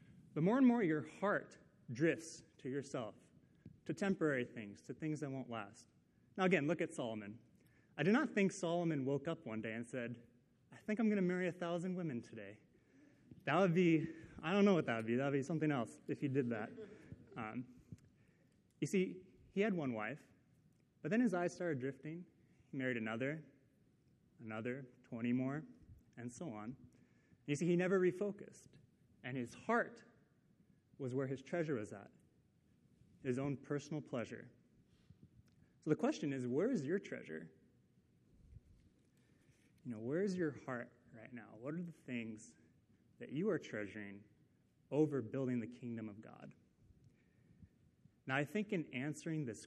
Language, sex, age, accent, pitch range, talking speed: English, male, 30-49, American, 120-165 Hz, 170 wpm